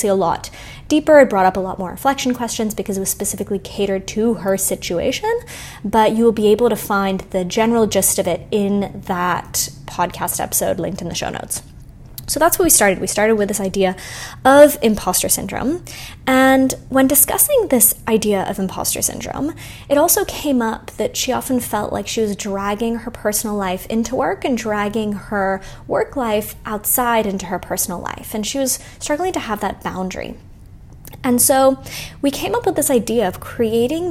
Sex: female